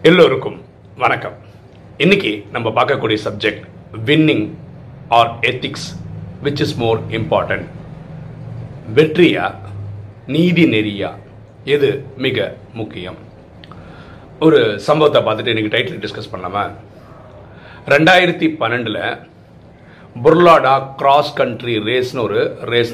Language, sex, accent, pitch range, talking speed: Tamil, male, native, 115-170 Hz, 90 wpm